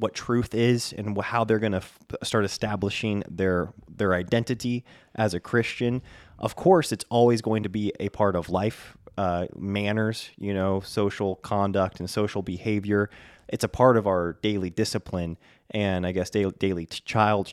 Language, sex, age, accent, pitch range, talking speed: English, male, 20-39, American, 95-115 Hz, 175 wpm